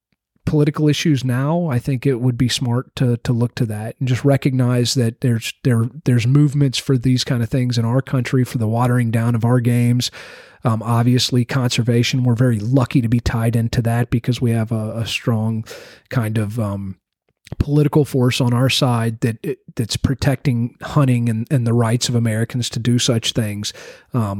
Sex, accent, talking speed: male, American, 190 wpm